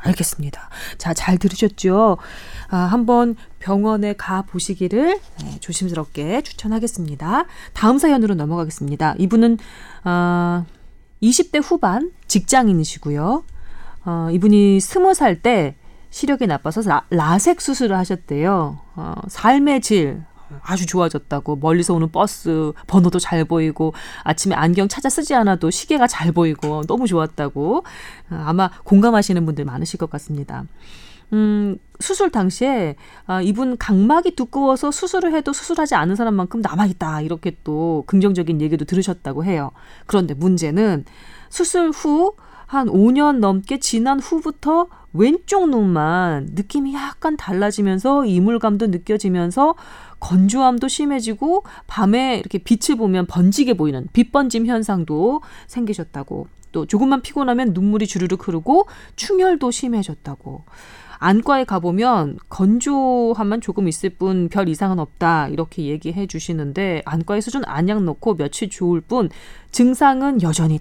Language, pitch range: Korean, 165-245 Hz